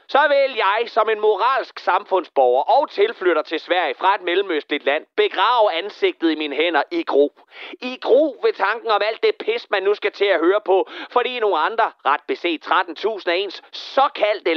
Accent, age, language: native, 30-49, Danish